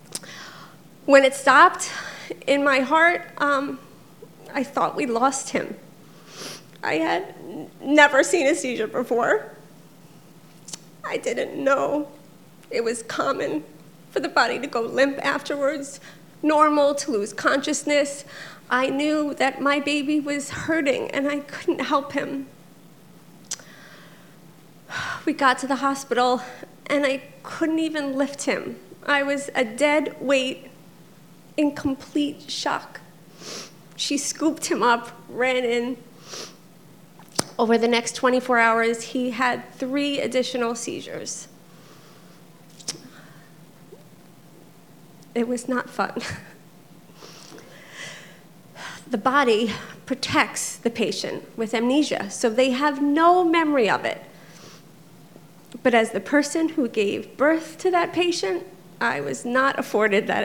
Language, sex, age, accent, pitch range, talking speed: English, female, 40-59, American, 230-290 Hz, 115 wpm